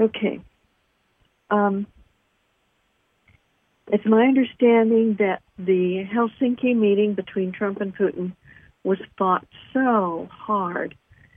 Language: English